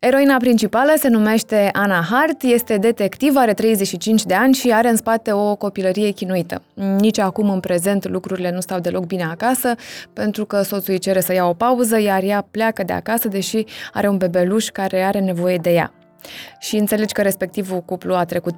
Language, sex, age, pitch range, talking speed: Romanian, female, 20-39, 190-230 Hz, 190 wpm